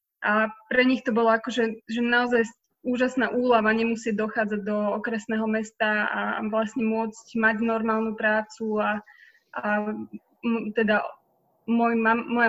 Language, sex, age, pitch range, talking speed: Slovak, female, 20-39, 220-235 Hz, 130 wpm